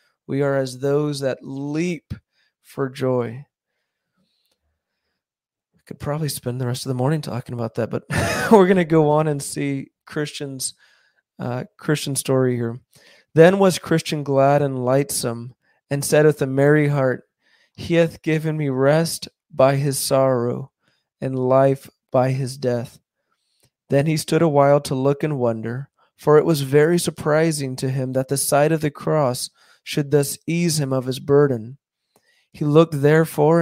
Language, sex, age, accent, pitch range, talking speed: English, male, 20-39, American, 130-150 Hz, 160 wpm